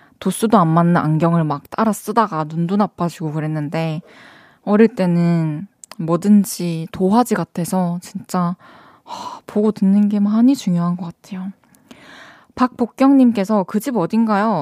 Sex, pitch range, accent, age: female, 175-240 Hz, native, 20-39